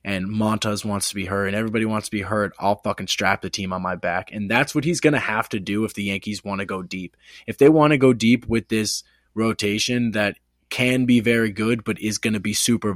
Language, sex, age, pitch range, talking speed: English, male, 20-39, 100-115 Hz, 260 wpm